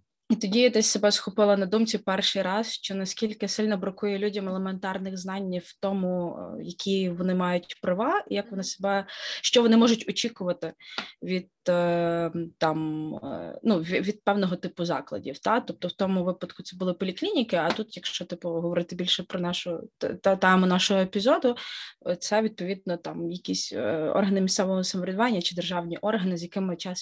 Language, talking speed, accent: Ukrainian, 160 wpm, native